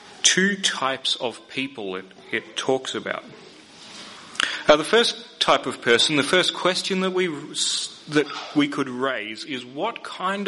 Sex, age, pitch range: male, 30-49, 120-165 Hz